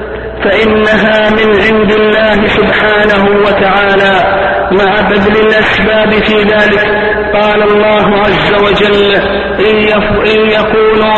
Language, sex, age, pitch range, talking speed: Arabic, male, 50-69, 205-215 Hz, 90 wpm